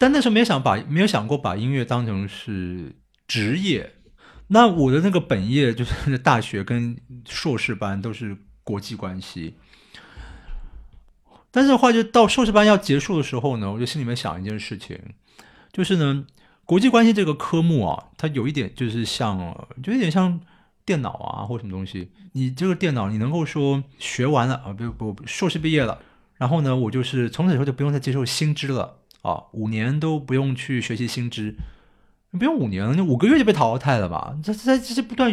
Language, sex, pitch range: Chinese, male, 115-175 Hz